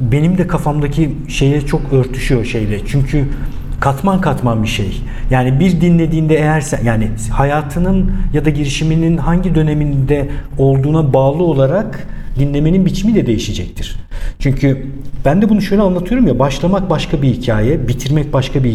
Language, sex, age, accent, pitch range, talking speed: Turkish, male, 50-69, native, 115-150 Hz, 145 wpm